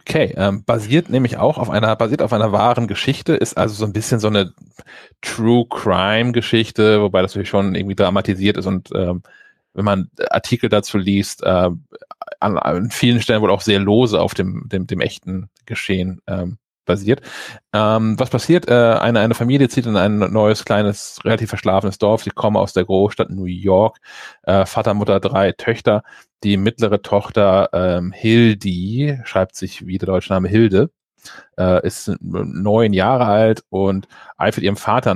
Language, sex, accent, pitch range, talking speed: German, male, German, 95-110 Hz, 170 wpm